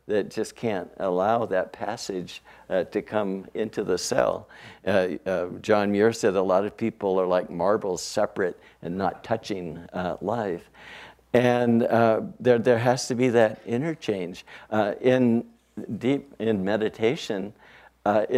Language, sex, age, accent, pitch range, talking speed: English, male, 60-79, American, 100-120 Hz, 145 wpm